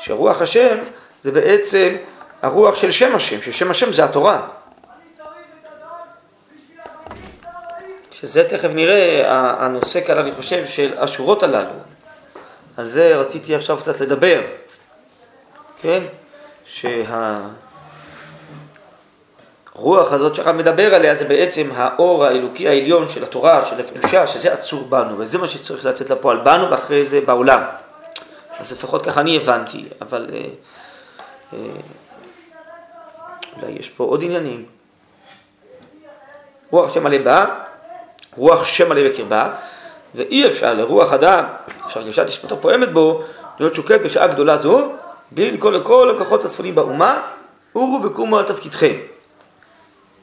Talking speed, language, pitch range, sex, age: 120 wpm, Hebrew, 275-455 Hz, male, 30-49